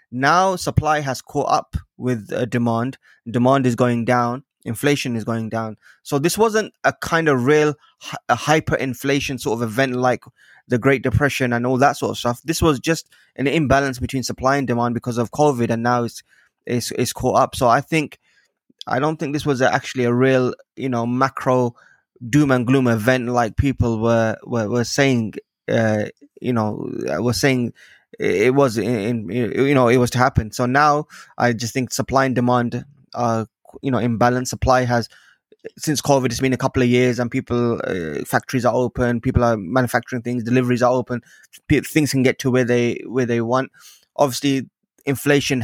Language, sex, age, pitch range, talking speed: English, male, 20-39, 120-140 Hz, 185 wpm